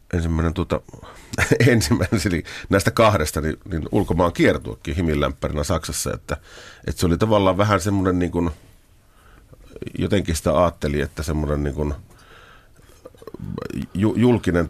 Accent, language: native, Finnish